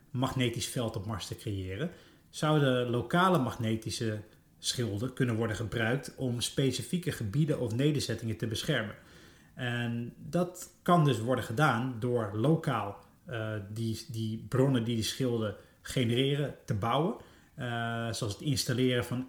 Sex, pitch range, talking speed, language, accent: male, 115-140 Hz, 135 wpm, Dutch, Dutch